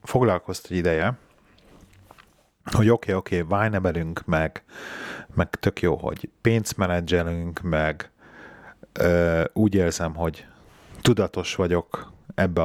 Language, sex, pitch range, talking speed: Hungarian, male, 85-105 Hz, 115 wpm